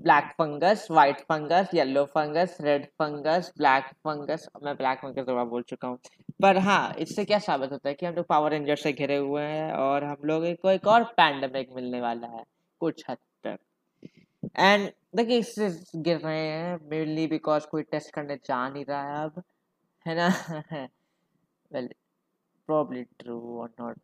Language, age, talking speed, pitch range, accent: Hindi, 20-39, 135 wpm, 140-185 Hz, native